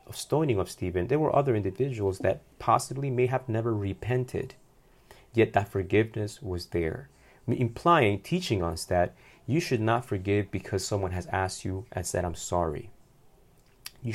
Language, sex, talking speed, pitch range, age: English, male, 155 wpm, 95-125 Hz, 30-49